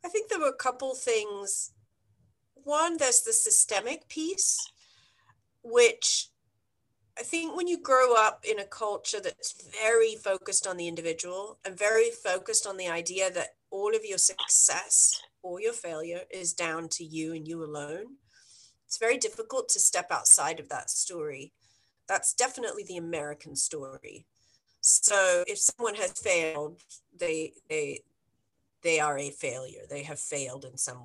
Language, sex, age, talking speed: English, female, 40-59, 155 wpm